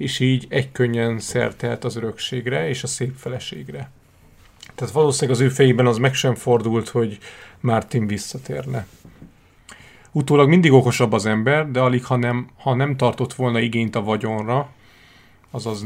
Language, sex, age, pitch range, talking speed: Hungarian, male, 30-49, 115-130 Hz, 150 wpm